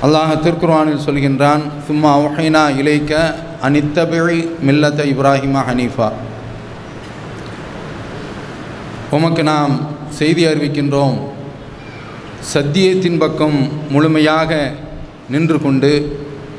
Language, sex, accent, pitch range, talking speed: English, male, Indian, 140-160 Hz, 70 wpm